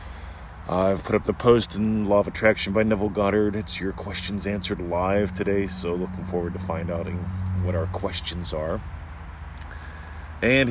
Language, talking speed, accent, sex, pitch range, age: English, 165 wpm, American, male, 80-100 Hz, 40-59